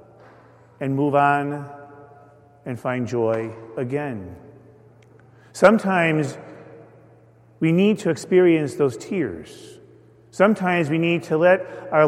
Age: 40-59